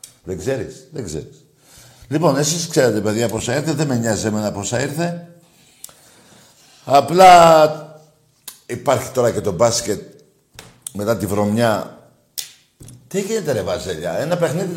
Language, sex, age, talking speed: Greek, male, 60-79, 135 wpm